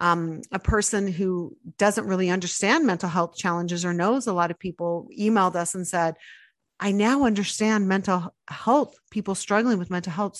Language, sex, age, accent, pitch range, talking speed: English, female, 40-59, American, 185-225 Hz, 175 wpm